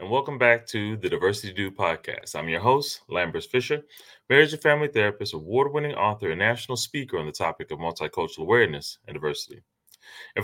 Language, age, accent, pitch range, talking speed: English, 30-49, American, 105-150 Hz, 180 wpm